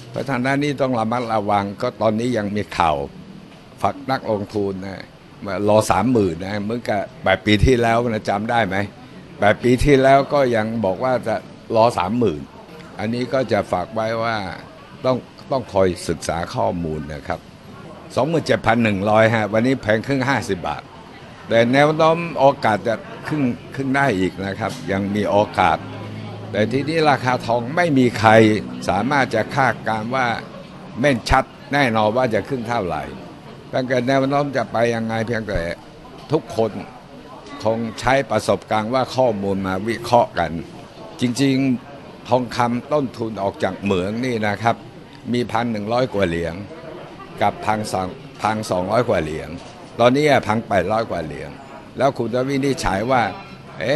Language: Thai